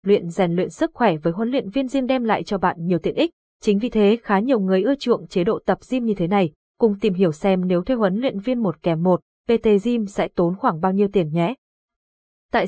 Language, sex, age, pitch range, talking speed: Vietnamese, female, 20-39, 185-235 Hz, 255 wpm